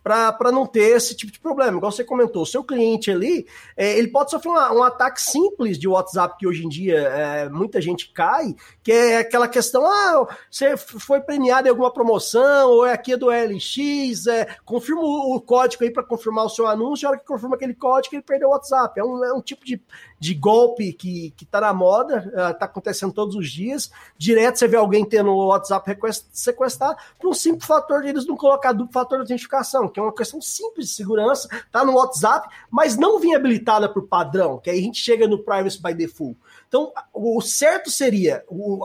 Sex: male